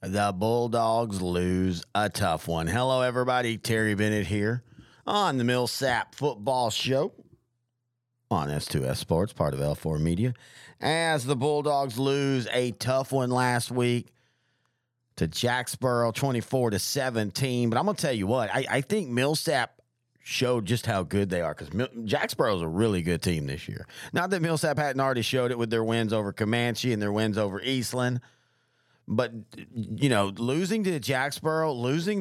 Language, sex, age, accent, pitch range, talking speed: English, male, 40-59, American, 105-135 Hz, 160 wpm